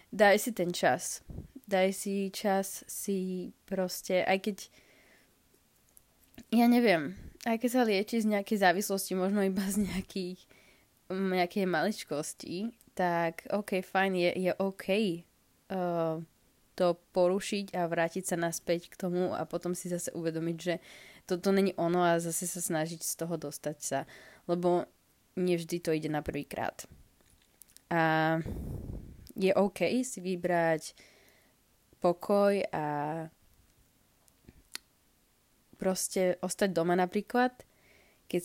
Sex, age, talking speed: female, 20-39, 120 wpm